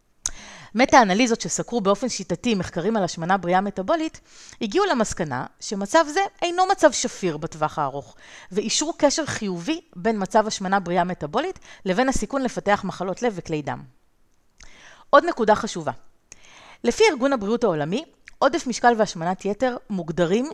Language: Hebrew